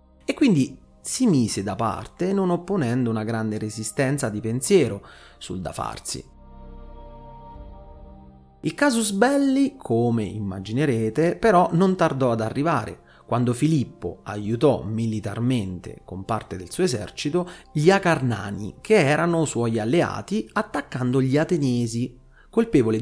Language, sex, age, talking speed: Italian, male, 30-49, 115 wpm